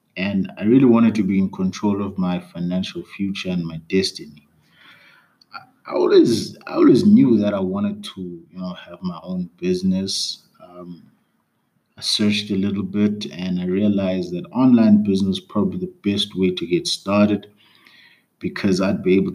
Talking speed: 165 wpm